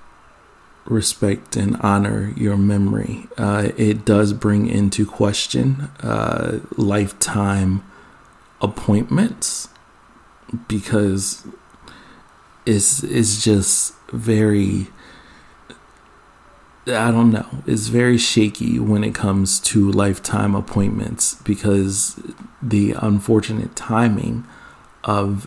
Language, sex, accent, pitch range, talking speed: English, male, American, 100-110 Hz, 85 wpm